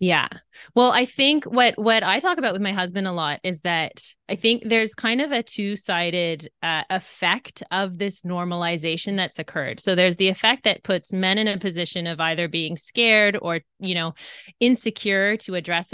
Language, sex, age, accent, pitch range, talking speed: English, female, 20-39, American, 175-215 Hz, 190 wpm